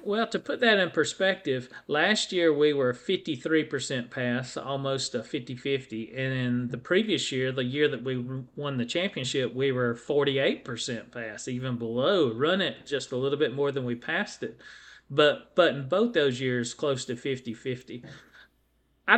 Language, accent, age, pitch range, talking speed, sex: English, American, 40-59, 125-150 Hz, 165 wpm, male